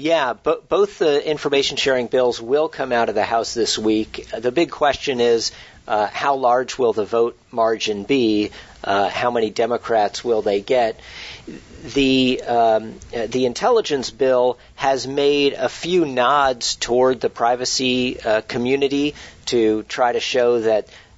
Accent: American